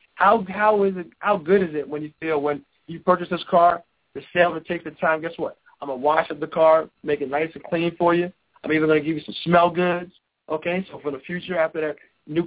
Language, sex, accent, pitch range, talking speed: English, male, American, 160-190 Hz, 265 wpm